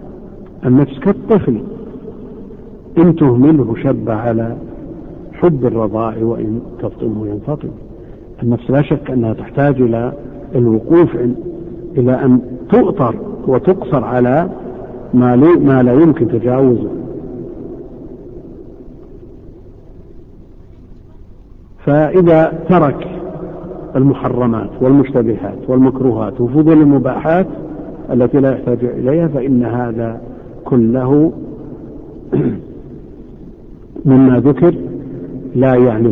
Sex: male